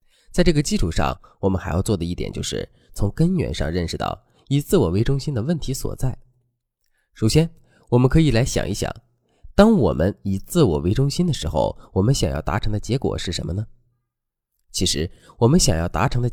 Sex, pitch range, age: male, 95-140 Hz, 20-39